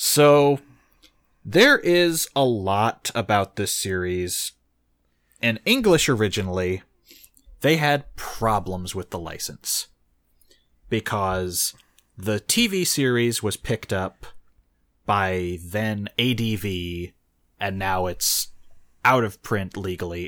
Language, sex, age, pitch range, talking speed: English, male, 30-49, 95-125 Hz, 100 wpm